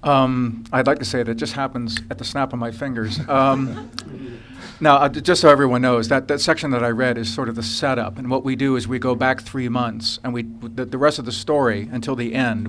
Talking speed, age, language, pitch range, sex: 255 wpm, 50-69, English, 110-130 Hz, male